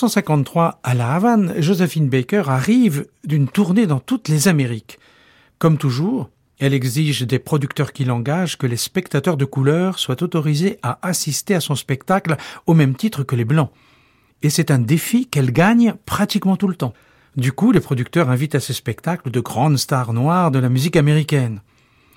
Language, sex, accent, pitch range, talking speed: French, male, French, 130-175 Hz, 175 wpm